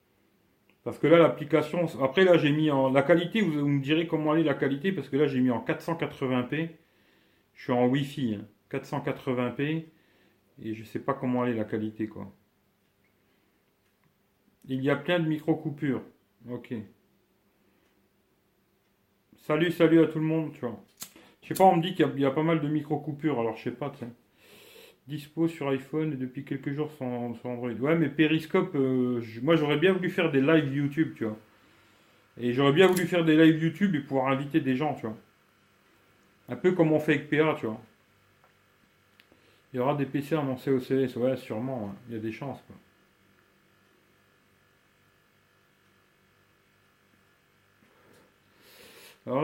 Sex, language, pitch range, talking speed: male, French, 125-160 Hz, 175 wpm